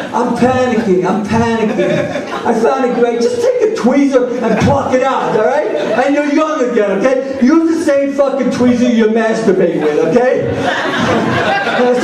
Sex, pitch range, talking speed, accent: male, 210-270 Hz, 160 wpm, American